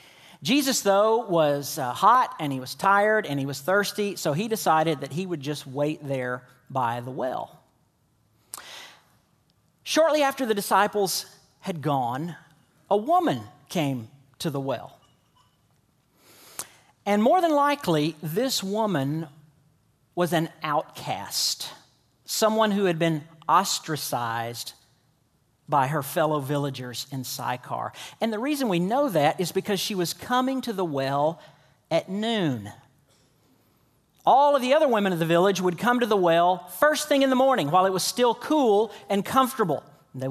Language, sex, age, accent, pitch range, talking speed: English, male, 50-69, American, 145-220 Hz, 145 wpm